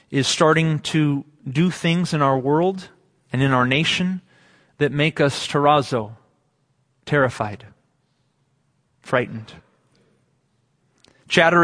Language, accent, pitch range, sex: English, American, 140-180 Hz, male